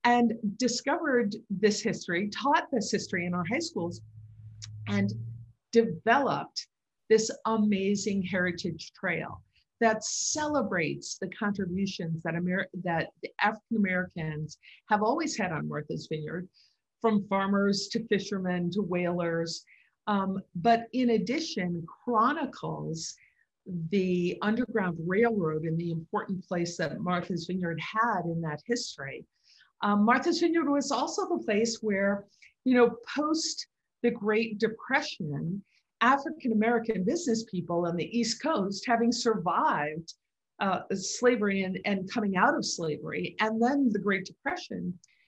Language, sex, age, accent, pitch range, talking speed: English, female, 50-69, American, 180-240 Hz, 120 wpm